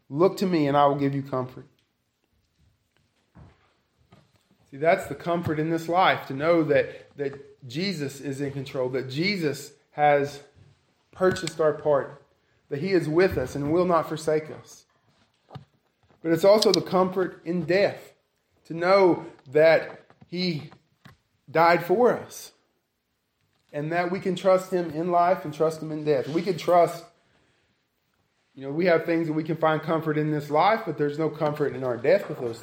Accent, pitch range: American, 140-170 Hz